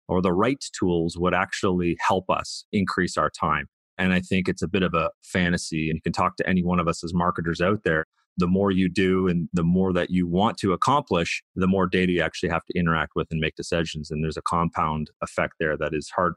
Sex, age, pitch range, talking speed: male, 30-49, 85-95 Hz, 240 wpm